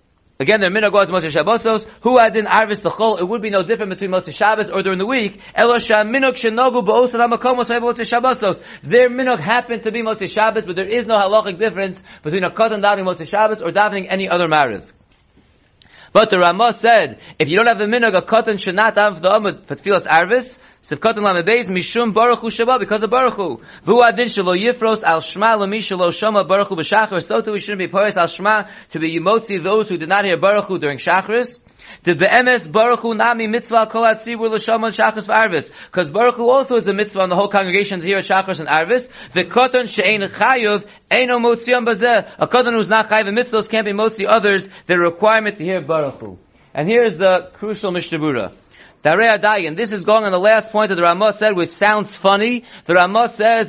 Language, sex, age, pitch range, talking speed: English, male, 40-59, 190-230 Hz, 195 wpm